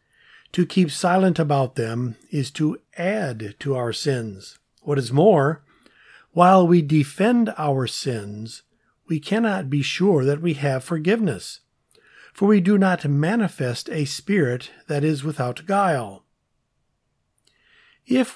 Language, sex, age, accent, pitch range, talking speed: English, male, 50-69, American, 130-175 Hz, 130 wpm